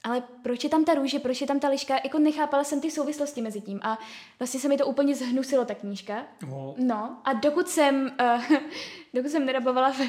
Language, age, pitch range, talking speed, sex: Czech, 10-29, 230-280 Hz, 210 wpm, female